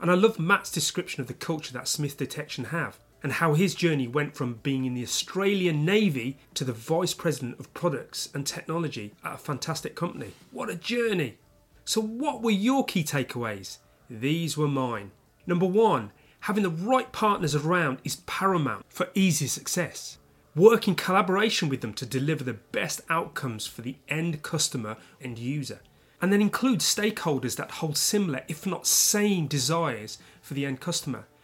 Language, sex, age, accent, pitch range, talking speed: English, male, 30-49, British, 130-185 Hz, 170 wpm